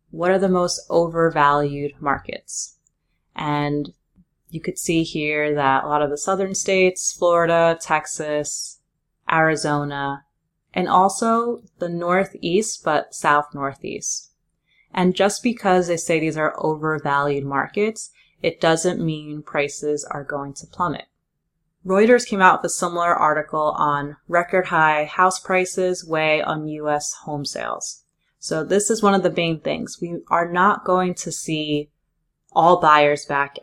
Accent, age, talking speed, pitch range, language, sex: American, 30-49, 140 wpm, 150-180 Hz, English, female